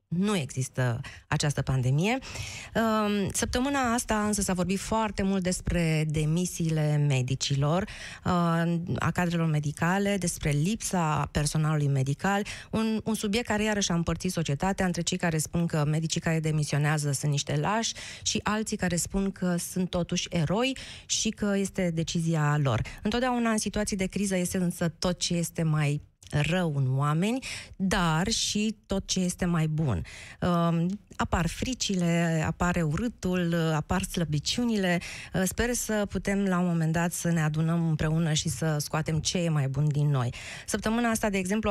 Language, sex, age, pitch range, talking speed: Romanian, female, 20-39, 155-195 Hz, 155 wpm